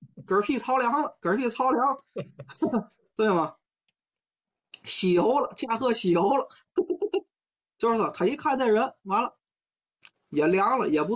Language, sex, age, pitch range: Chinese, male, 20-39, 160-270 Hz